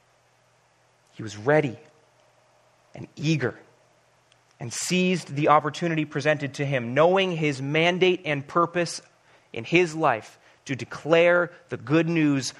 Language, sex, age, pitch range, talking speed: English, male, 30-49, 135-165 Hz, 120 wpm